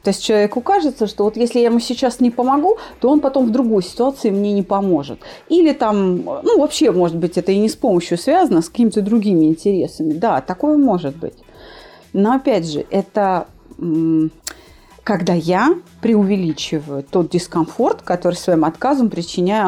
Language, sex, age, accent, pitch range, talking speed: Russian, female, 30-49, native, 185-255 Hz, 165 wpm